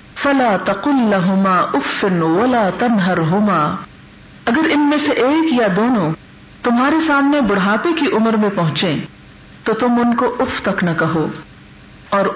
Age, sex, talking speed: 50-69, female, 140 wpm